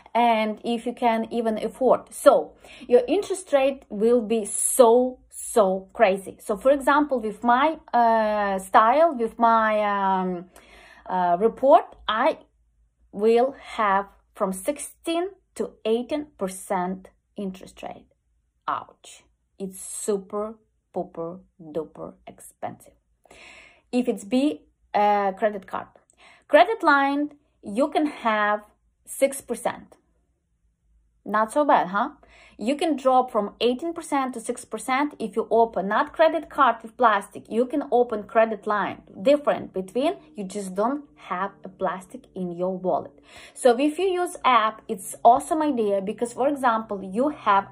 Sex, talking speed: female, 130 wpm